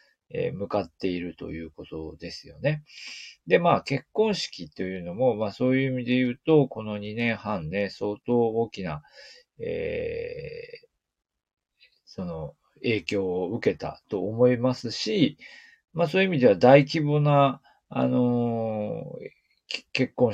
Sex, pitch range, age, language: male, 100-150 Hz, 40-59, Japanese